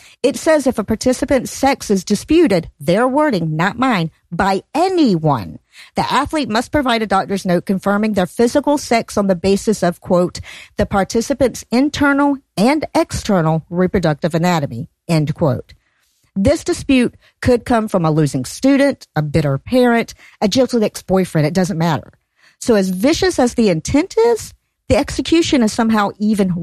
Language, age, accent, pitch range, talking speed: English, 50-69, American, 180-260 Hz, 155 wpm